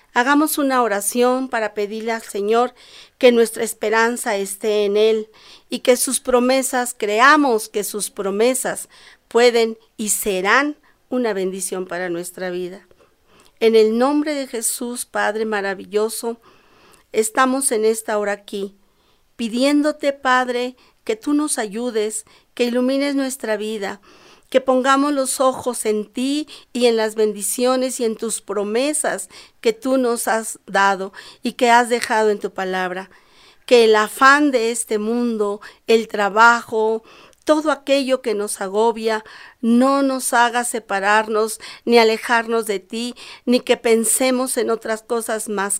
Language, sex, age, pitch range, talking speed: Spanish, female, 40-59, 215-255 Hz, 140 wpm